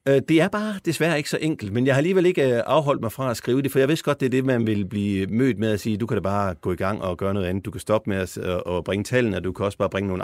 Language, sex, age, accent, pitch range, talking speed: Danish, male, 50-69, native, 105-140 Hz, 335 wpm